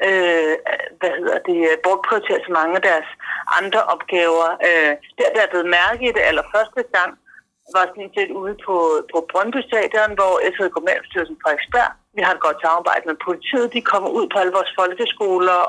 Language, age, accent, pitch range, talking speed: Danish, 60-79, native, 170-230 Hz, 180 wpm